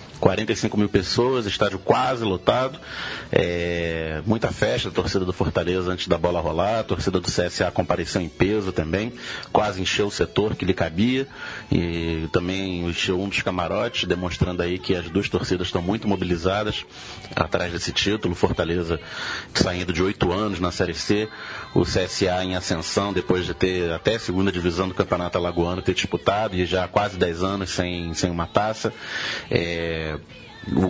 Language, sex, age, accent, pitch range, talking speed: Portuguese, male, 30-49, Brazilian, 90-100 Hz, 165 wpm